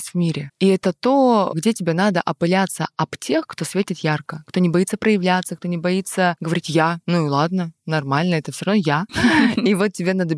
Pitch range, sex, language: 155-185 Hz, female, Russian